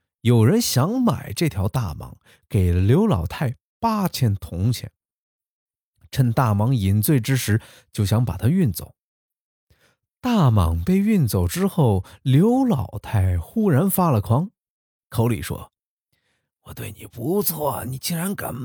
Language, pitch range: Chinese, 100-160 Hz